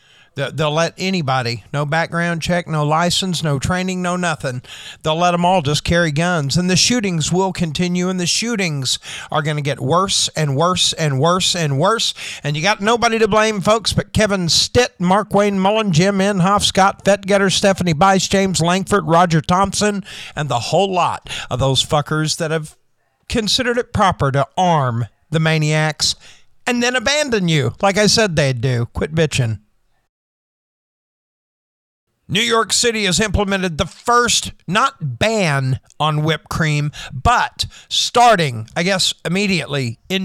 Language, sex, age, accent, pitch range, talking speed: English, male, 50-69, American, 155-205 Hz, 160 wpm